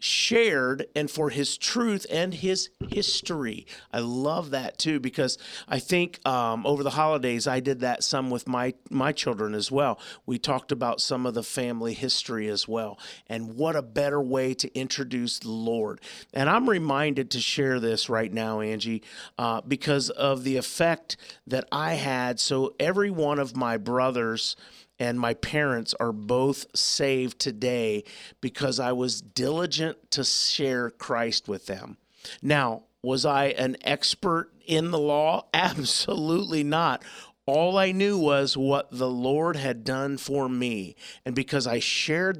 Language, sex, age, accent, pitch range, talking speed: English, male, 50-69, American, 120-150 Hz, 160 wpm